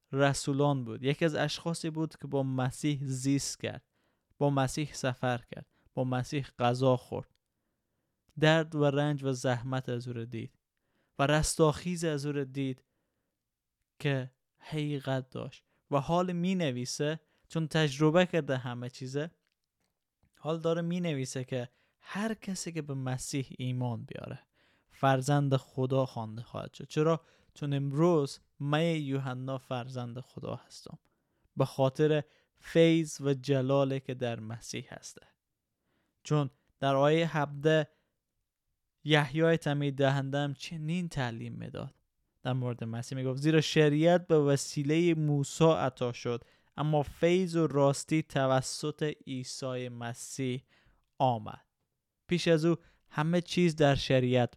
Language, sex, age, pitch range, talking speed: Persian, male, 20-39, 130-155 Hz, 125 wpm